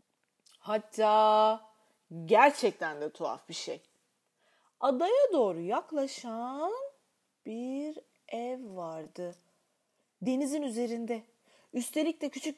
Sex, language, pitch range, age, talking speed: female, Turkish, 215-300 Hz, 30-49, 80 wpm